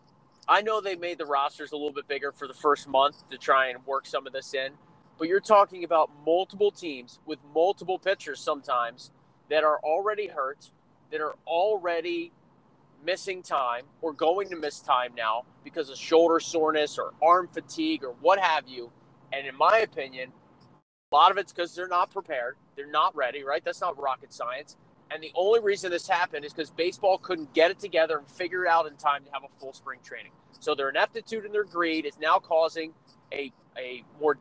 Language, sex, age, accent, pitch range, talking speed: English, male, 30-49, American, 145-180 Hz, 200 wpm